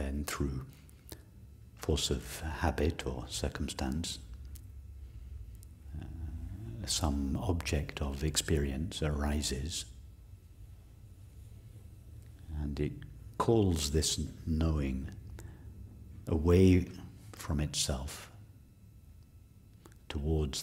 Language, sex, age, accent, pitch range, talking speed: English, male, 60-79, British, 75-95 Hz, 65 wpm